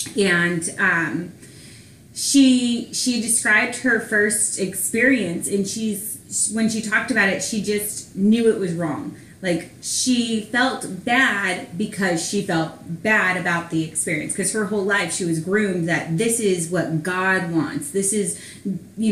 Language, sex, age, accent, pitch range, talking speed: English, female, 30-49, American, 175-230 Hz, 150 wpm